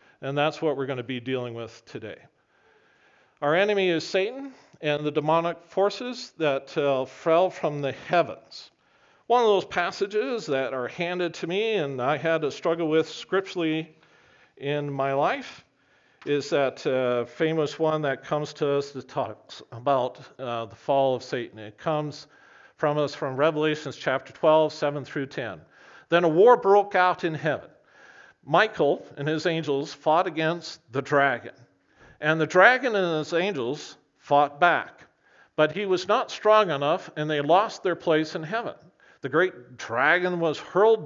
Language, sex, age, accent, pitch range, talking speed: English, male, 50-69, American, 140-185 Hz, 165 wpm